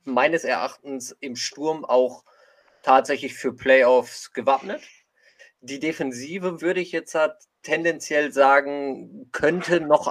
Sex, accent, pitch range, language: male, German, 130-160 Hz, German